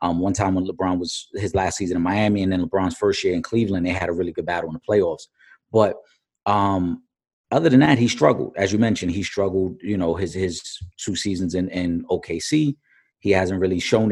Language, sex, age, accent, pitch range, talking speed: English, male, 30-49, American, 95-130 Hz, 220 wpm